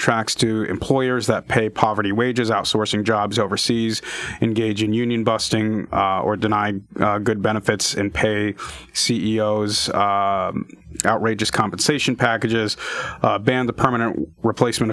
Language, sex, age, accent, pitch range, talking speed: English, male, 30-49, American, 110-120 Hz, 130 wpm